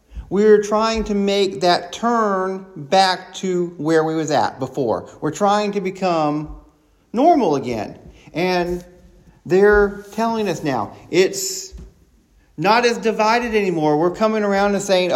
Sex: male